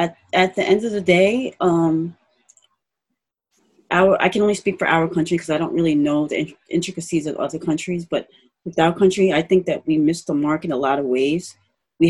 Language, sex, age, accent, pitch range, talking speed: English, female, 30-49, American, 165-190 Hz, 220 wpm